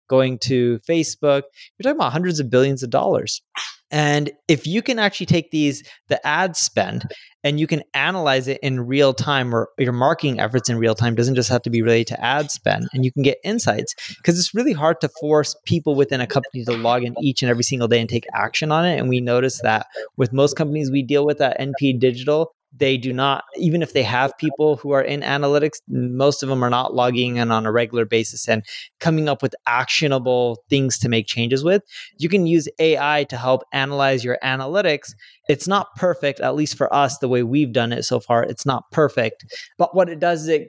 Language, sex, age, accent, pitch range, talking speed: English, male, 20-39, American, 125-155 Hz, 225 wpm